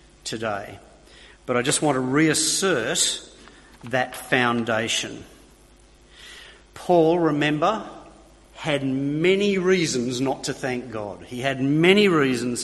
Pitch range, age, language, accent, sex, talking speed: 125-160 Hz, 50-69, English, Australian, male, 105 wpm